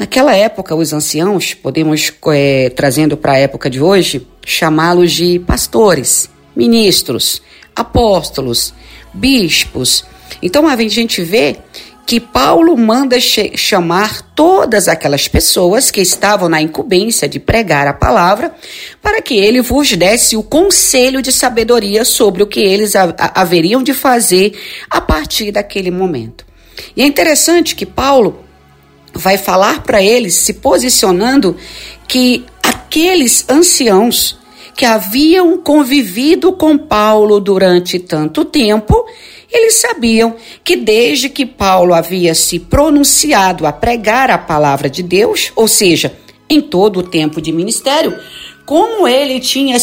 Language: Portuguese